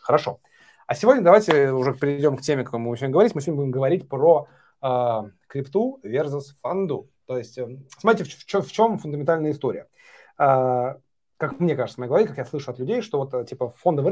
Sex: male